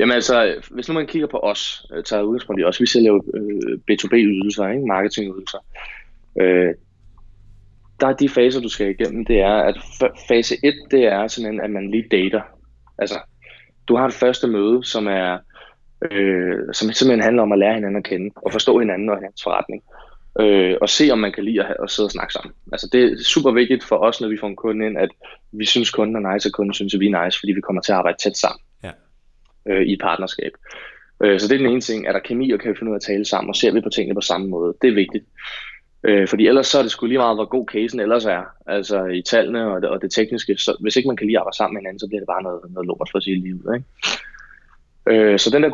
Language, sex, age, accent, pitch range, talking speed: Danish, male, 20-39, native, 100-120 Hz, 250 wpm